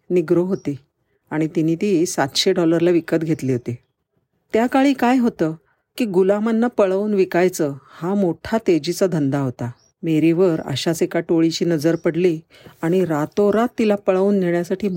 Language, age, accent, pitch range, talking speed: Marathi, 50-69, native, 150-190 Hz, 130 wpm